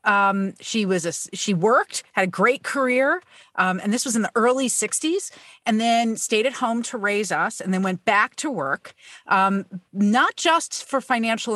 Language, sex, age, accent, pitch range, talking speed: English, female, 40-59, American, 195-255 Hz, 185 wpm